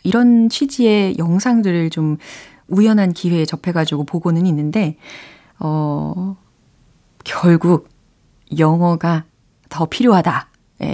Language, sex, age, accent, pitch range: Korean, female, 30-49, native, 160-220 Hz